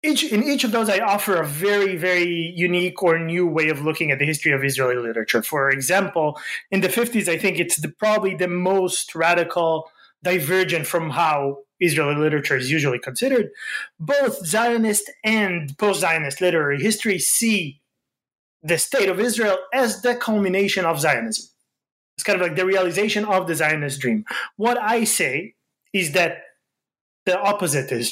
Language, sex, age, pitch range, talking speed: English, male, 20-39, 160-210 Hz, 160 wpm